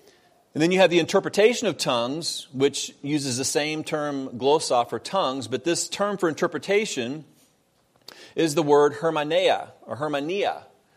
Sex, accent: male, American